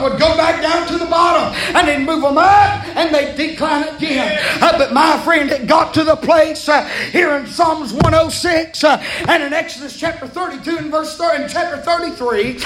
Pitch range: 295-335 Hz